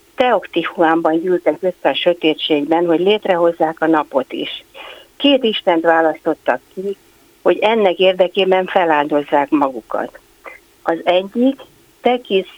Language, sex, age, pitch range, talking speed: Hungarian, female, 50-69, 165-215 Hz, 105 wpm